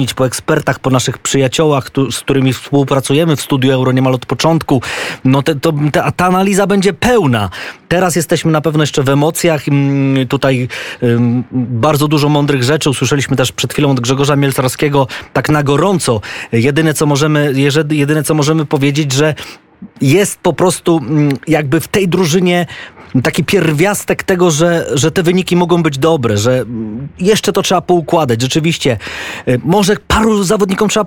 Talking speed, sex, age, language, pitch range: 145 wpm, male, 20-39, Polish, 130-175 Hz